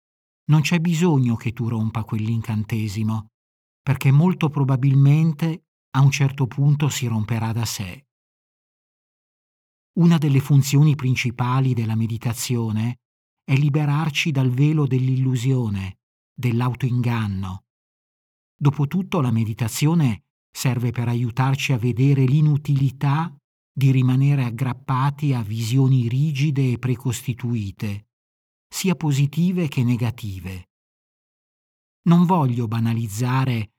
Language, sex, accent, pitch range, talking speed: Italian, male, native, 115-140 Hz, 95 wpm